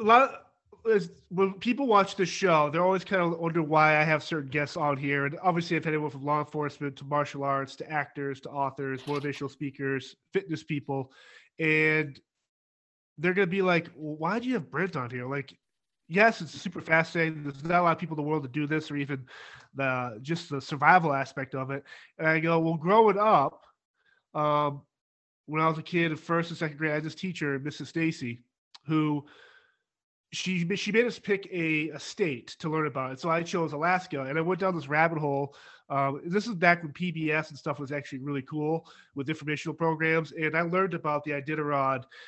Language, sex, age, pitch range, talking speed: English, male, 30-49, 145-170 Hz, 205 wpm